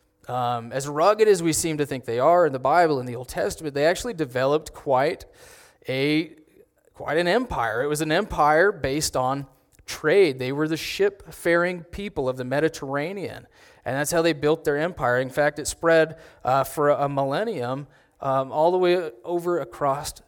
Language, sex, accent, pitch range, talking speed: English, male, American, 130-165 Hz, 180 wpm